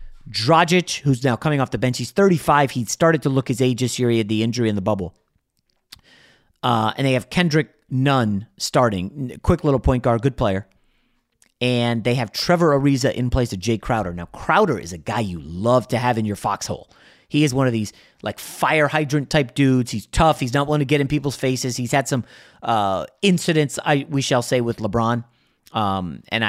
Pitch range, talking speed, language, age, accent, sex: 115-150 Hz, 210 wpm, English, 30-49, American, male